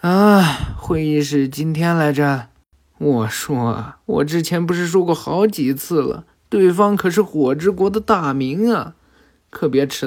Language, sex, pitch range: Chinese, male, 130-185 Hz